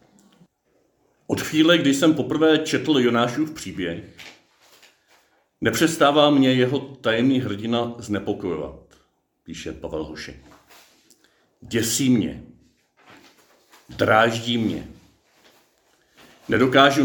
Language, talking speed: Czech, 75 wpm